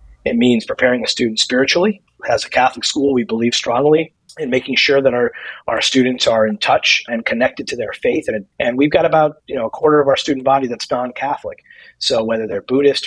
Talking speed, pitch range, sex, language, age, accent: 215 wpm, 120-165 Hz, male, English, 40-59, American